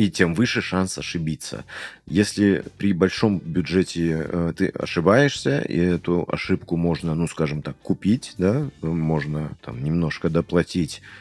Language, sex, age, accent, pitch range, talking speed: Russian, male, 30-49, native, 80-100 Hz, 135 wpm